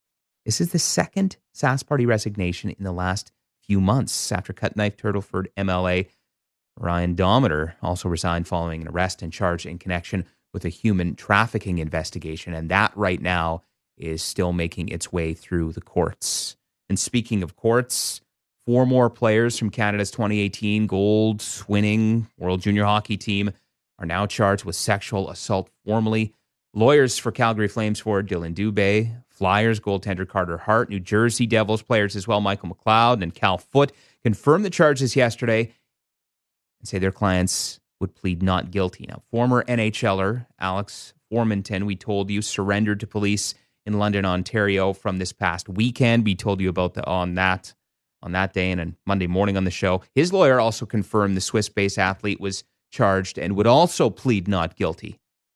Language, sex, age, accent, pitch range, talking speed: English, male, 30-49, American, 90-110 Hz, 165 wpm